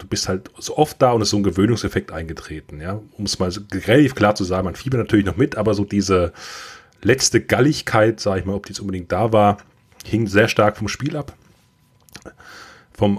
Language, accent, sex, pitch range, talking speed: German, German, male, 100-120 Hz, 220 wpm